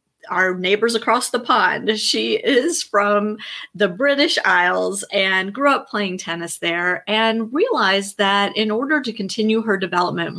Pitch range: 185-235 Hz